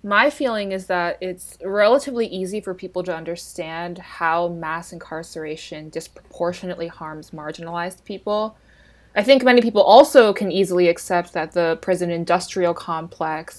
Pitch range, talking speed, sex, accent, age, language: 165-195 Hz, 135 wpm, female, American, 20-39, English